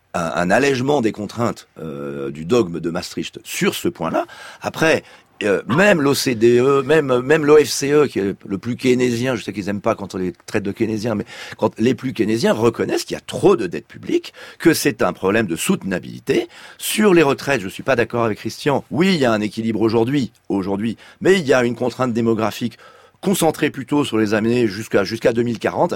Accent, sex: French, male